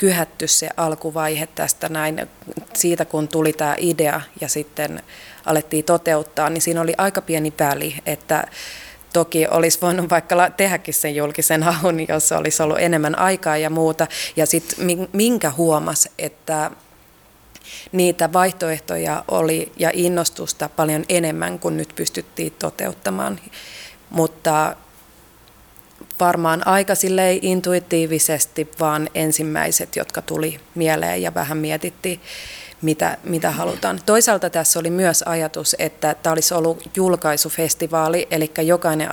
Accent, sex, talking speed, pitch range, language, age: native, female, 125 wpm, 155-170 Hz, Finnish, 30-49